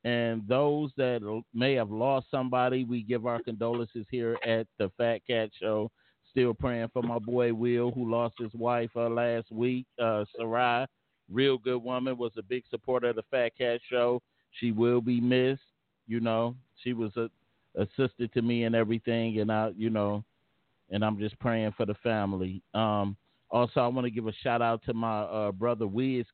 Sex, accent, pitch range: male, American, 105-125 Hz